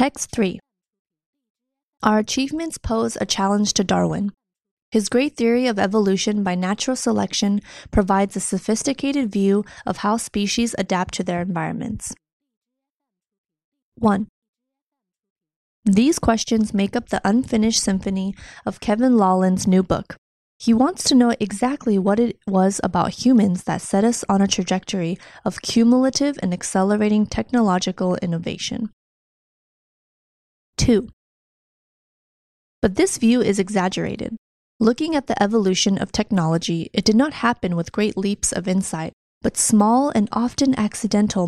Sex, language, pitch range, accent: female, Chinese, 185-230 Hz, American